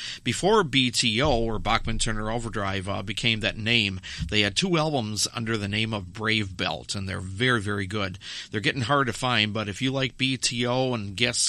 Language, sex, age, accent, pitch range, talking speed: English, male, 50-69, American, 100-135 Hz, 195 wpm